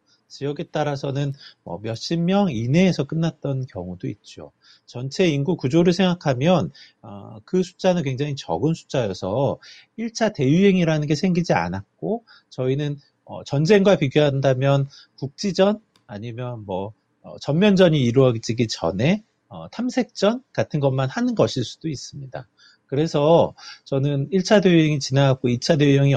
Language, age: Korean, 30-49